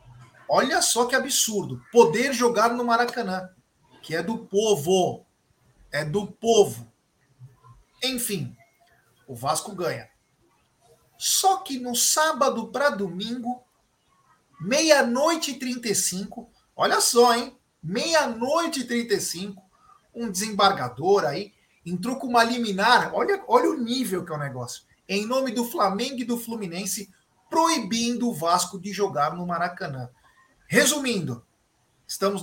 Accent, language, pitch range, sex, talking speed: Brazilian, Portuguese, 175-240 Hz, male, 120 wpm